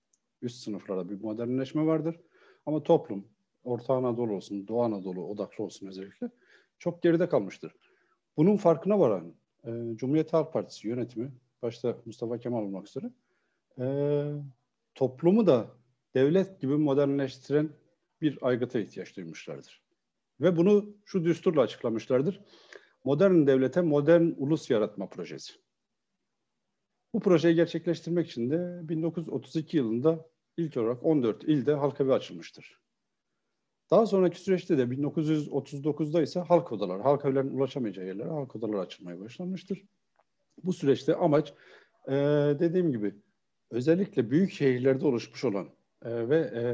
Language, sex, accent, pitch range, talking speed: Turkish, male, native, 120-165 Hz, 120 wpm